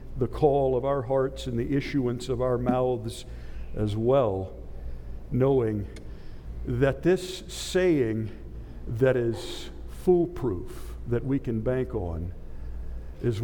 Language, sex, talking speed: English, male, 115 wpm